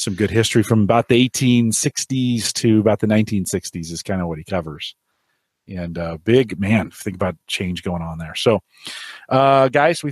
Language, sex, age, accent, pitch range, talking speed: English, male, 30-49, American, 95-130 Hz, 185 wpm